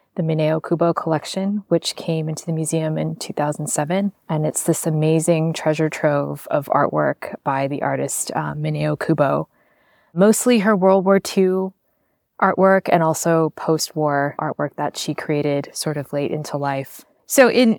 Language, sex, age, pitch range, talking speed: English, female, 20-39, 155-180 Hz, 150 wpm